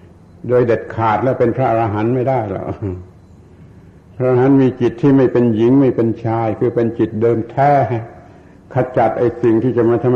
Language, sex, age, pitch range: Thai, male, 70-89, 100-120 Hz